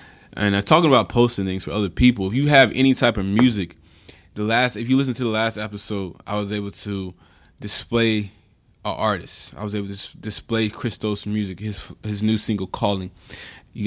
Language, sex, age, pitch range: English, male, 20-39, 95-110 Hz